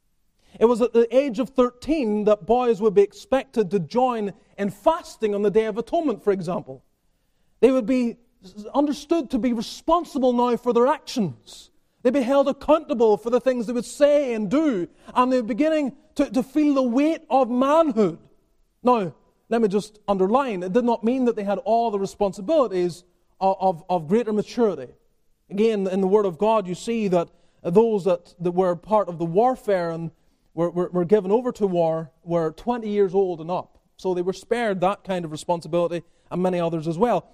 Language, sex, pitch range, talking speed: English, male, 185-255 Hz, 195 wpm